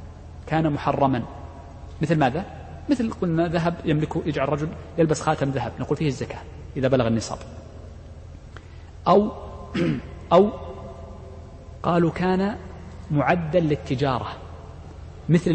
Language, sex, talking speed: Arabic, male, 105 wpm